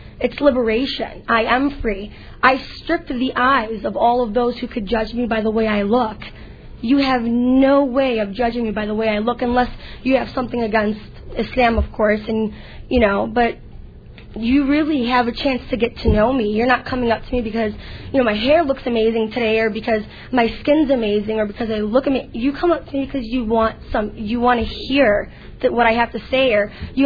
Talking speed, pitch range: 225 wpm, 220-255 Hz